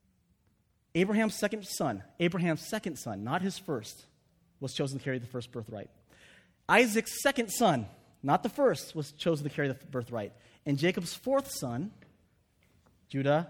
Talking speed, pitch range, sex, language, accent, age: 145 wpm, 120-185 Hz, male, English, American, 30-49